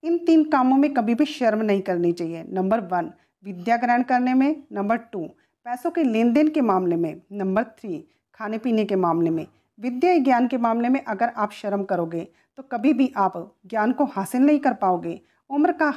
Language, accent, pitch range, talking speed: Hindi, native, 190-265 Hz, 200 wpm